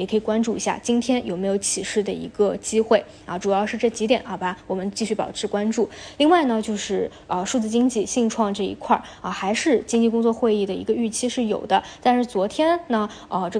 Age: 20-39